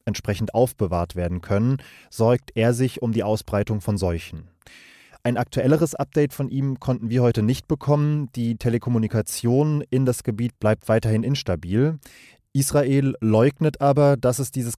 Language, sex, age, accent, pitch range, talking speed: German, male, 30-49, German, 105-130 Hz, 145 wpm